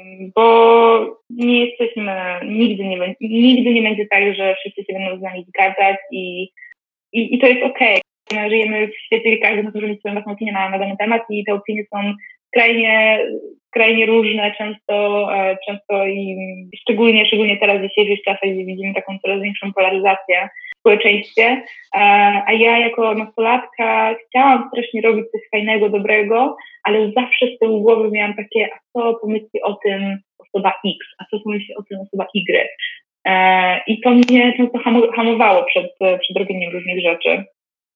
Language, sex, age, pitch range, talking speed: Polish, female, 20-39, 195-235 Hz, 160 wpm